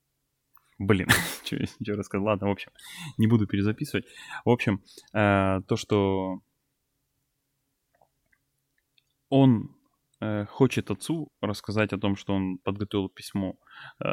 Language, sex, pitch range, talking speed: Russian, male, 100-135 Hz, 105 wpm